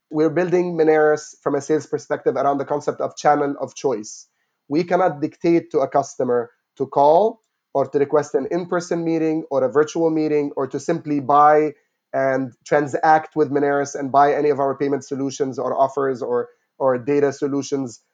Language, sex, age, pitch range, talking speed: English, male, 30-49, 140-165 Hz, 175 wpm